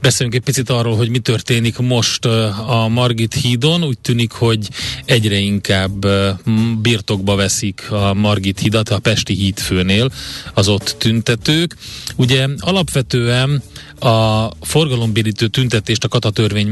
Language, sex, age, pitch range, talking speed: Hungarian, male, 30-49, 100-120 Hz, 120 wpm